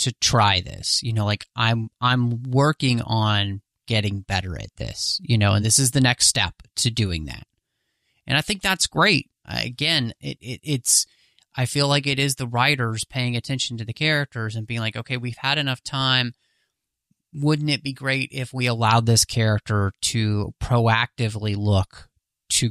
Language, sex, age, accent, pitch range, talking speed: English, male, 30-49, American, 115-135 Hz, 175 wpm